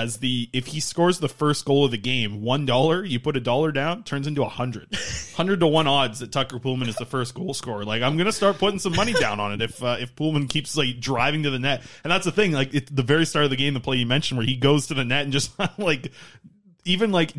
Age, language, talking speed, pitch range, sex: 20-39, English, 275 wpm, 120-150 Hz, male